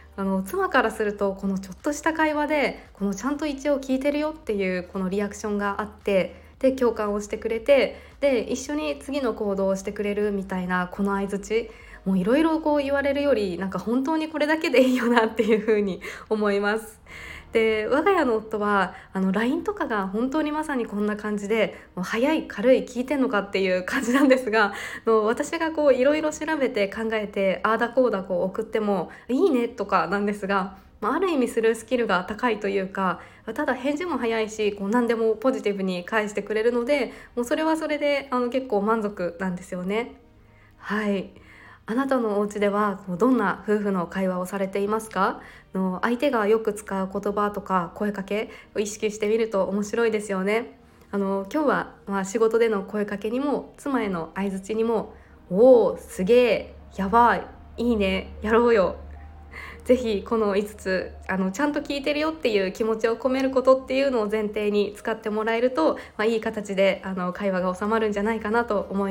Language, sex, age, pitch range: Japanese, female, 20-39, 195-255 Hz